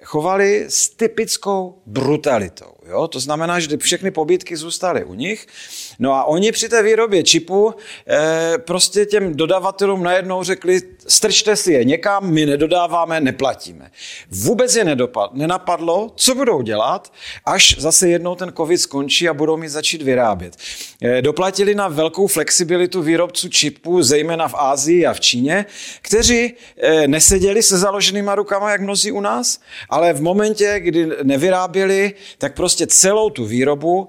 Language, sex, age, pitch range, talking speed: Czech, male, 40-59, 135-200 Hz, 150 wpm